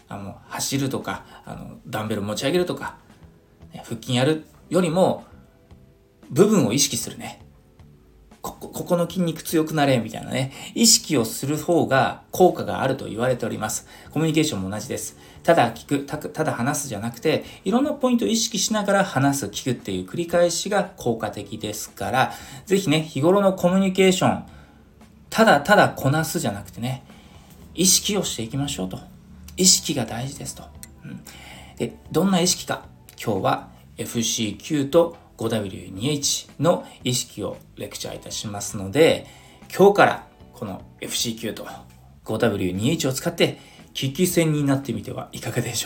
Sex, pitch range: male, 105-160 Hz